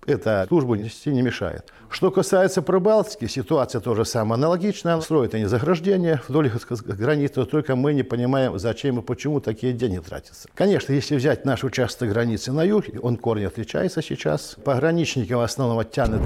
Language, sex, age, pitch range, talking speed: Russian, male, 60-79, 115-155 Hz, 160 wpm